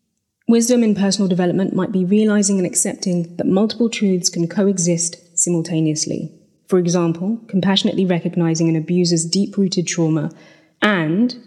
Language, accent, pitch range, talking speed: English, British, 165-195 Hz, 125 wpm